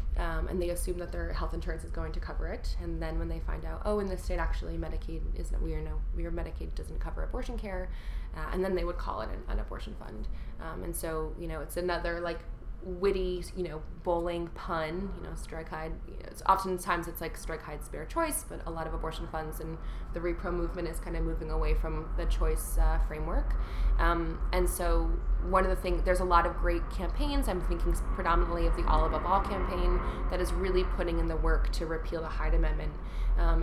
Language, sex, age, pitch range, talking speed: English, female, 20-39, 160-180 Hz, 220 wpm